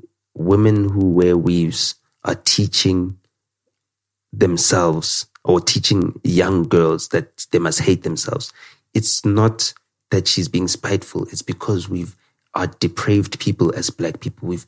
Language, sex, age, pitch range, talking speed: English, male, 30-49, 100-120 Hz, 130 wpm